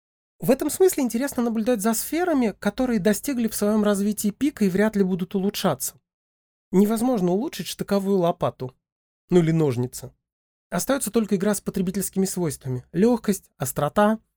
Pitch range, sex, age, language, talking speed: 160-215 Hz, male, 30-49, Russian, 140 wpm